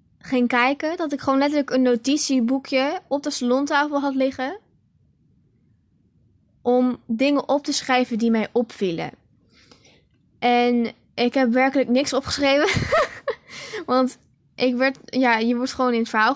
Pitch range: 225-270 Hz